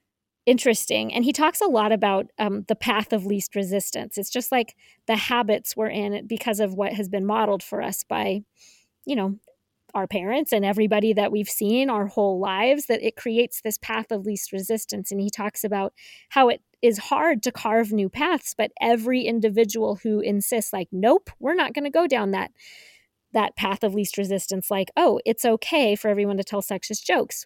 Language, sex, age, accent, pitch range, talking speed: English, female, 20-39, American, 205-250 Hz, 195 wpm